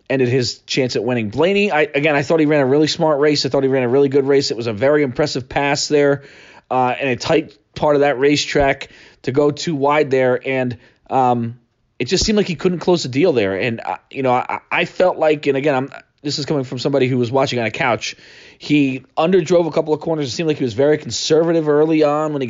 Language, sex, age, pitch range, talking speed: English, male, 30-49, 125-155 Hz, 255 wpm